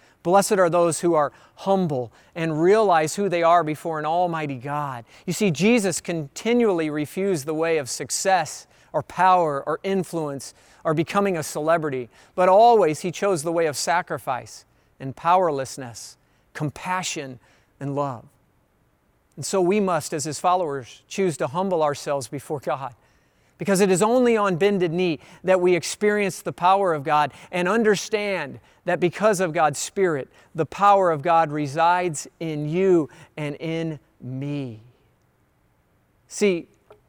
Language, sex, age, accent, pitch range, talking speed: English, male, 40-59, American, 140-185 Hz, 145 wpm